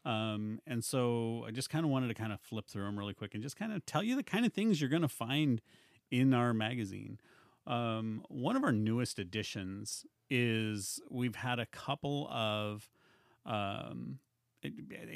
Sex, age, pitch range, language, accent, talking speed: male, 40-59, 105-130 Hz, English, American, 180 wpm